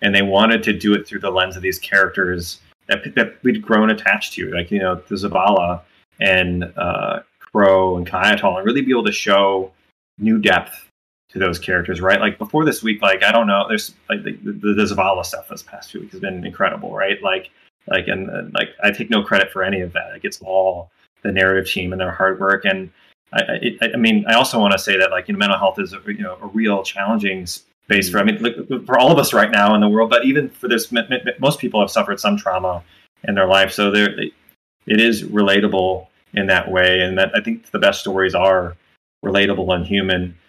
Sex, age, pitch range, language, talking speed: male, 20-39, 95-105 Hz, English, 240 wpm